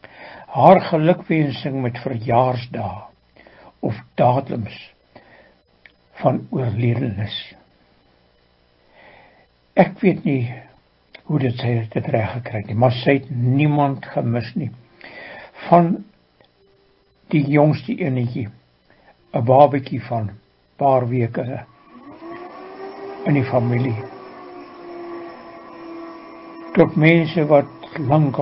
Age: 60-79